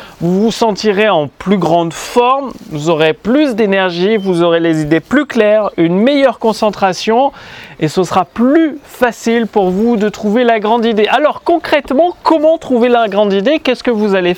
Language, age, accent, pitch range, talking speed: French, 30-49, French, 190-250 Hz, 180 wpm